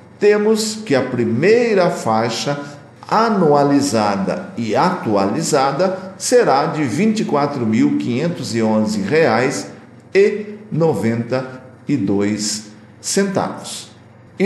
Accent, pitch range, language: Brazilian, 115-175 Hz, Portuguese